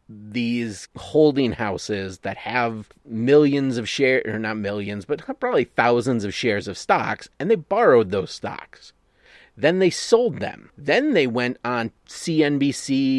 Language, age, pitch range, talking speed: English, 30-49, 105-150 Hz, 145 wpm